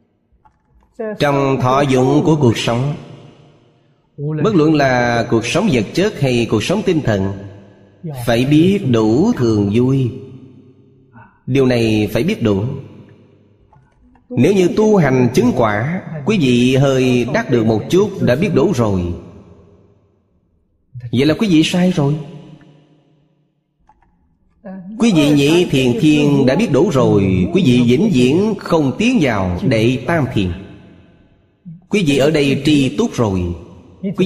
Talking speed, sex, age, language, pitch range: 135 wpm, male, 30-49, Vietnamese, 110-150 Hz